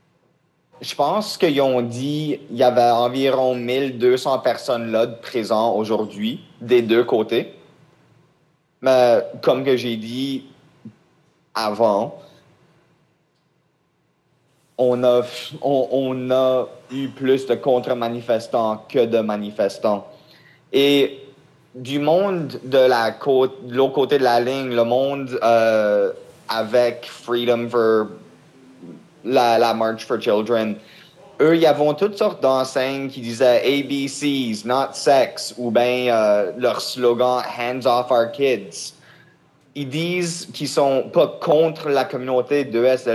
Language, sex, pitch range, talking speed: French, male, 120-145 Hz, 125 wpm